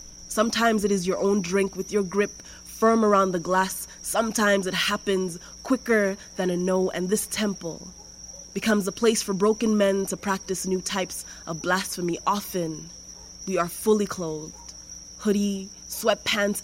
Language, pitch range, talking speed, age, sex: English, 175-205 Hz, 150 wpm, 20-39, female